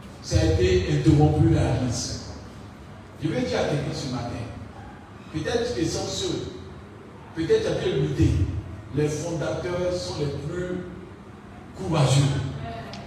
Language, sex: French, male